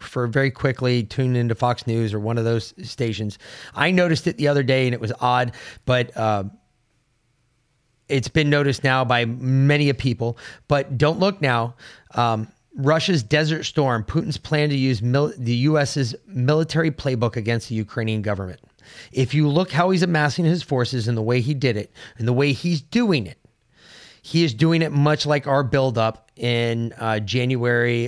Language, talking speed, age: English, 180 wpm, 30-49